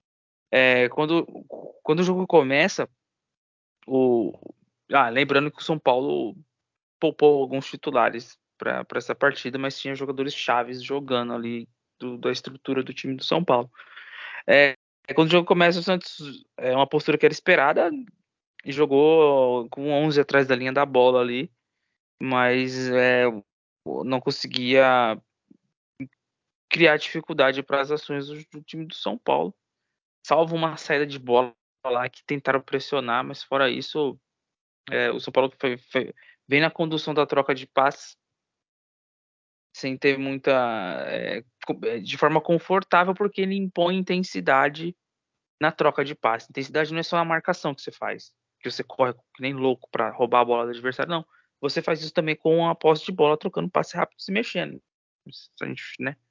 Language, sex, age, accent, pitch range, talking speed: Portuguese, male, 20-39, Brazilian, 130-160 Hz, 160 wpm